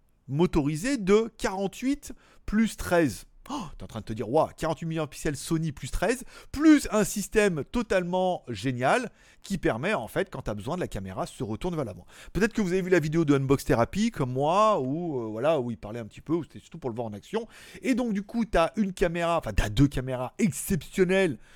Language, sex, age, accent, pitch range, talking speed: French, male, 30-49, French, 125-190 Hz, 230 wpm